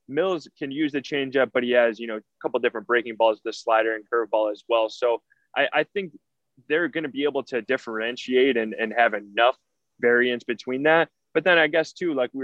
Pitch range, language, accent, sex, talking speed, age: 120-140 Hz, English, American, male, 225 wpm, 20-39